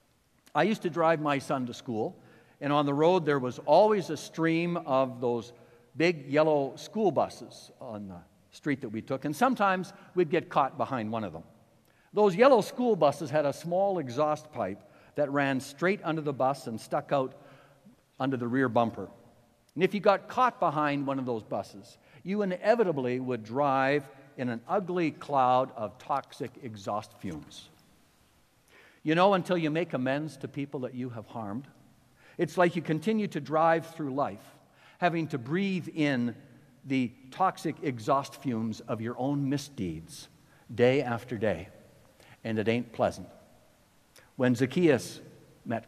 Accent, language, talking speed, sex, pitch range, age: American, English, 160 wpm, male, 120-160 Hz, 60-79